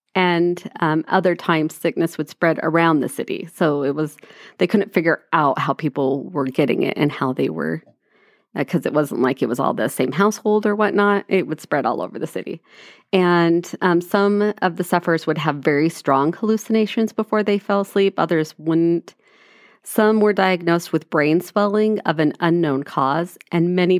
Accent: American